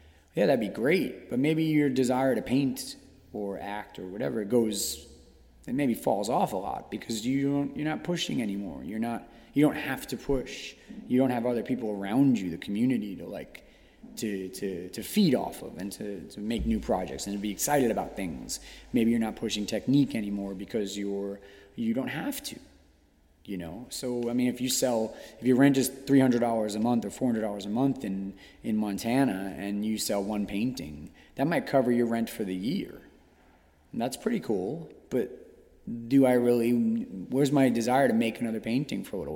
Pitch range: 100-135 Hz